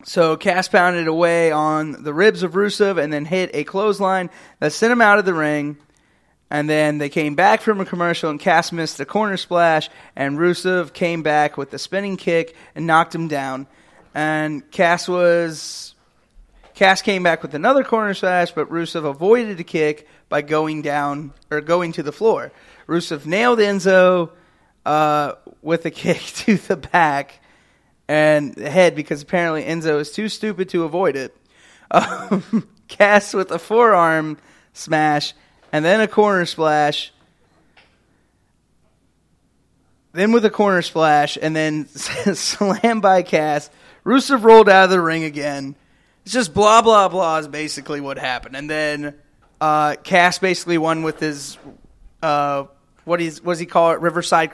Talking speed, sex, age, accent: 160 wpm, male, 30-49, American